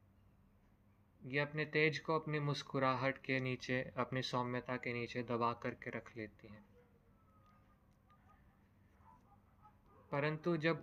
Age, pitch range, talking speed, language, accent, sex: 20-39, 110-135 Hz, 105 wpm, Hindi, native, male